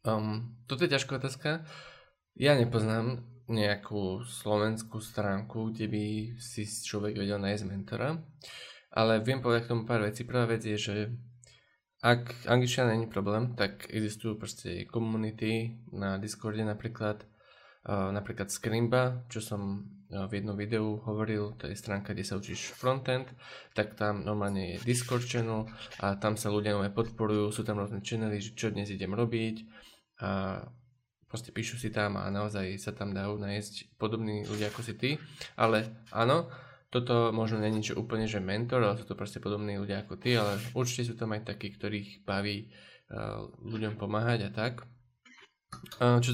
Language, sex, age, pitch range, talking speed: Slovak, male, 20-39, 105-120 Hz, 155 wpm